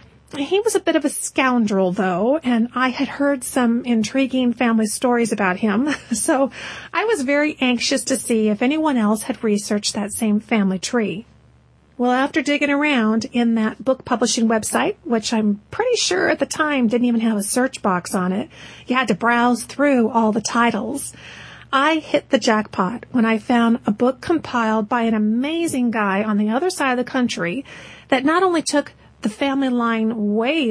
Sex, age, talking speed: female, 40-59, 185 wpm